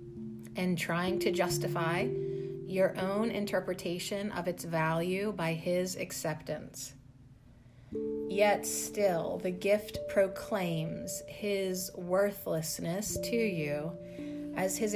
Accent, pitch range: American, 135-195 Hz